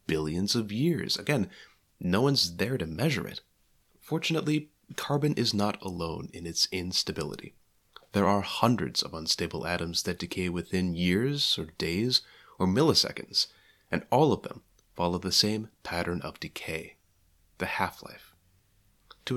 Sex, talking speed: male, 140 wpm